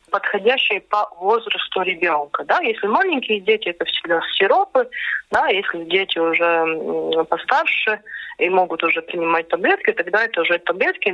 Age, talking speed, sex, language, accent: 30-49, 125 wpm, female, Russian, native